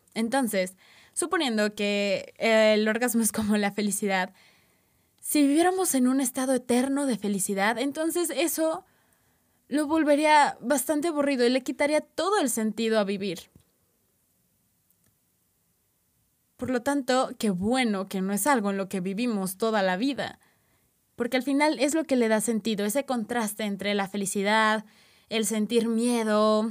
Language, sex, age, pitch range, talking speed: Spanish, female, 20-39, 200-255 Hz, 145 wpm